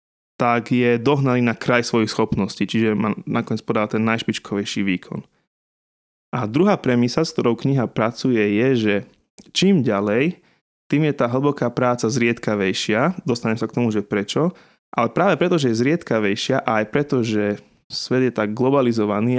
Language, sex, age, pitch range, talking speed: Slovak, male, 20-39, 110-125 Hz, 160 wpm